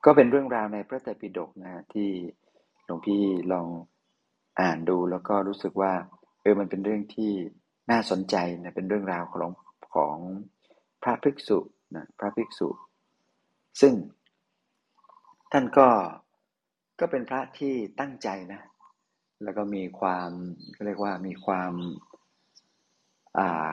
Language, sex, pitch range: Thai, male, 95-105 Hz